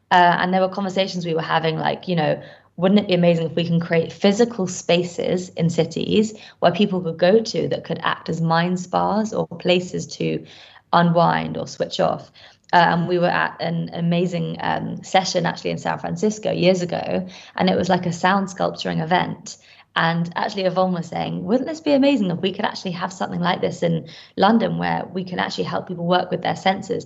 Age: 20-39